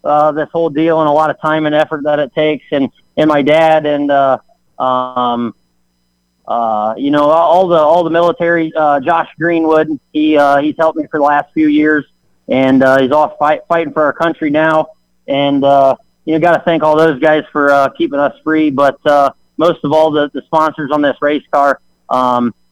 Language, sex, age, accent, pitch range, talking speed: English, male, 30-49, American, 135-155 Hz, 205 wpm